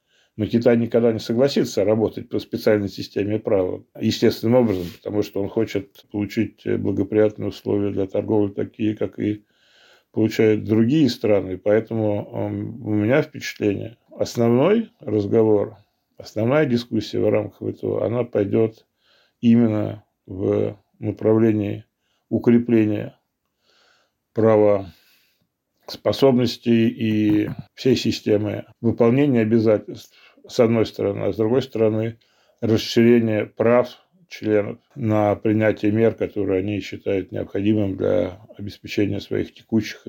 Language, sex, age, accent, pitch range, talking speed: Russian, male, 20-39, American, 105-120 Hz, 110 wpm